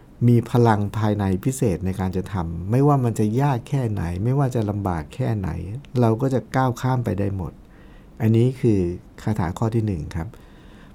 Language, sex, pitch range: Thai, male, 105-140 Hz